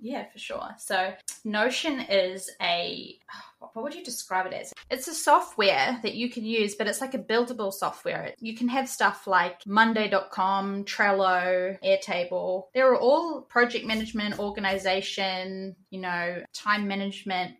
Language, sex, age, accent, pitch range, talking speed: English, female, 20-39, Australian, 190-240 Hz, 150 wpm